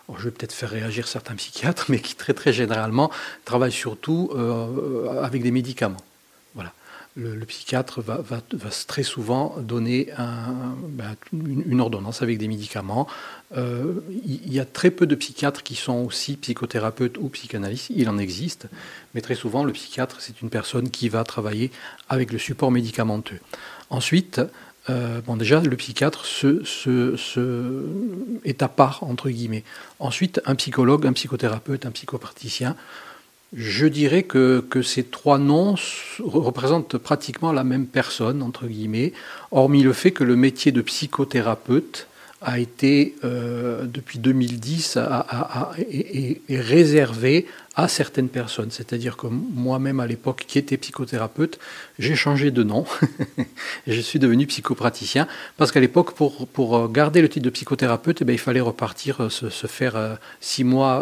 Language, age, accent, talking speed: French, 40-59, French, 160 wpm